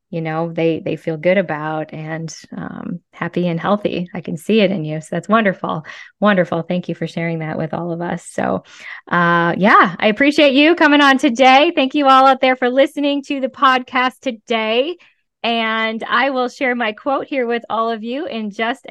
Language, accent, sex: English, American, female